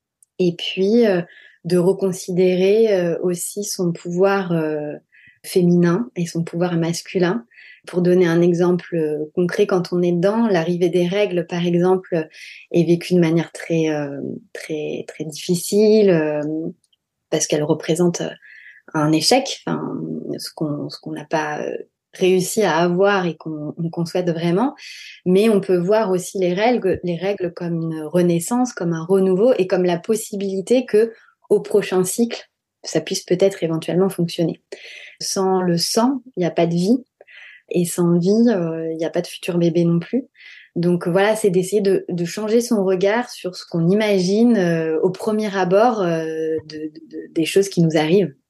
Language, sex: French, female